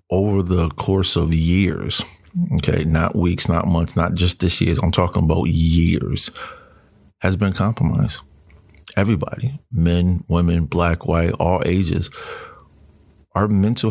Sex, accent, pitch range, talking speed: male, American, 85-100 Hz, 130 wpm